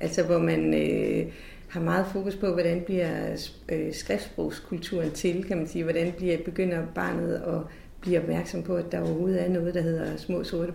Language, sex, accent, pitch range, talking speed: Danish, female, native, 160-190 Hz, 185 wpm